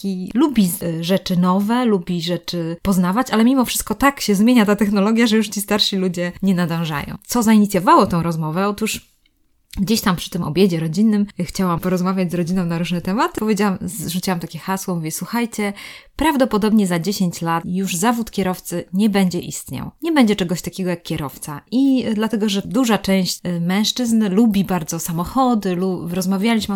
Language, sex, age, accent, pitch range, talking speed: Polish, female, 20-39, native, 180-225 Hz, 165 wpm